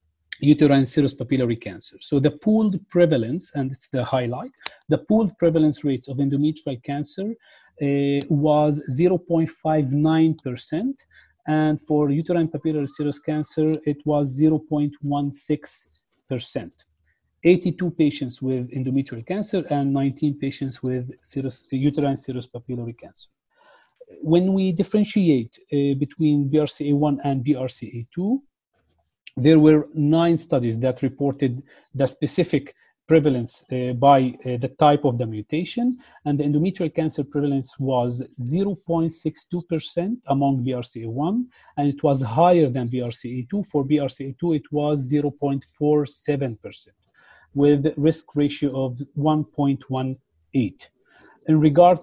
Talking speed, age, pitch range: 110 wpm, 40-59, 135-160 Hz